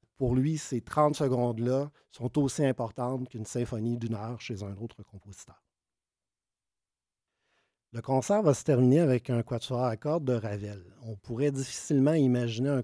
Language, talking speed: French, 155 wpm